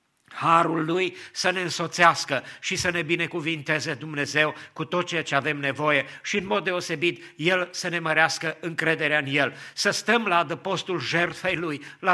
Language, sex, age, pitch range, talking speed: English, male, 50-69, 145-170 Hz, 170 wpm